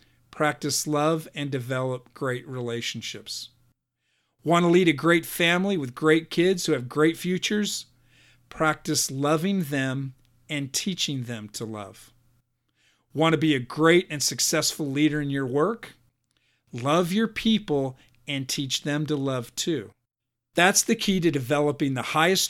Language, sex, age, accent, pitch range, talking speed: English, male, 50-69, American, 125-165 Hz, 145 wpm